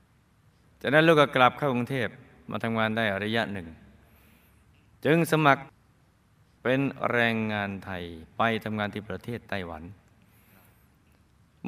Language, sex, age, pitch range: Thai, male, 20-39, 100-125 Hz